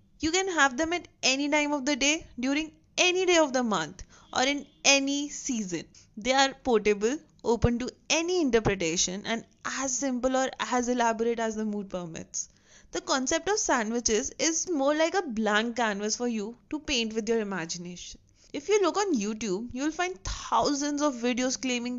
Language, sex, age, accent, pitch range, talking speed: English, female, 20-39, Indian, 220-290 Hz, 180 wpm